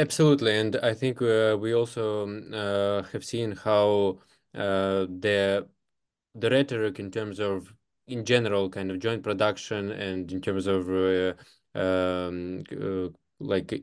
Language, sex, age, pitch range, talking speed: English, male, 20-39, 100-120 Hz, 140 wpm